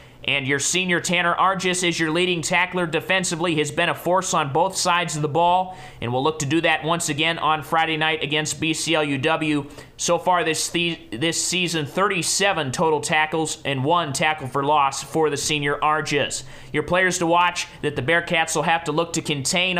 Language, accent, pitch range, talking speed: English, American, 145-170 Hz, 195 wpm